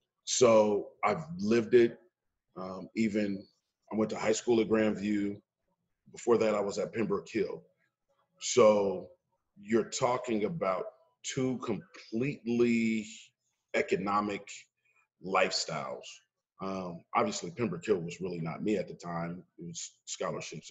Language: English